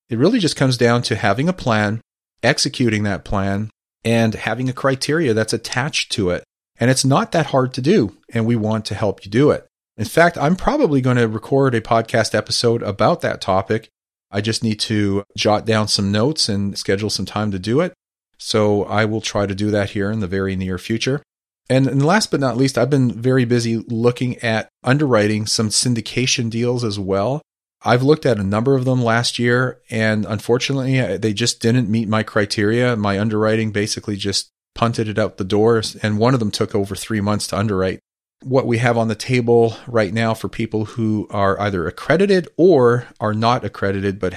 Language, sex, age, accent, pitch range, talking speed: English, male, 40-59, American, 105-120 Hz, 200 wpm